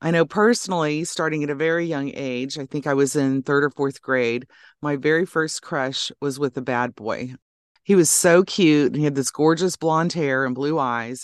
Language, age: English, 30-49